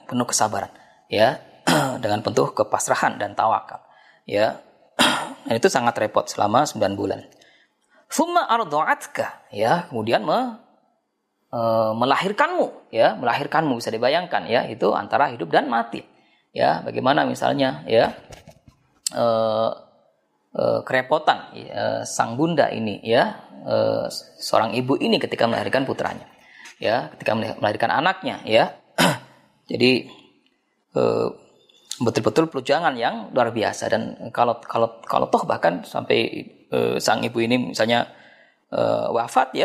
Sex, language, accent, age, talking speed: female, Indonesian, native, 20-39, 115 wpm